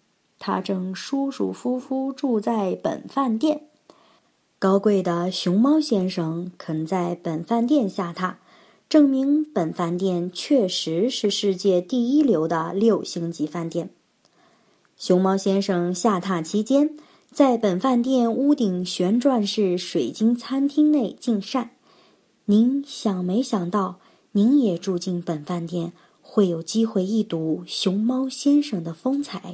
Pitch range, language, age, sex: 185-260 Hz, Chinese, 30-49, male